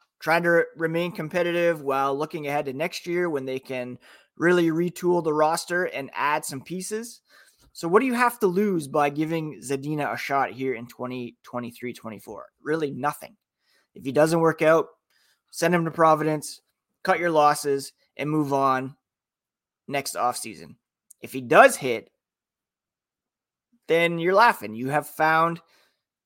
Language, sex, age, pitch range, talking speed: English, male, 20-39, 135-170 Hz, 150 wpm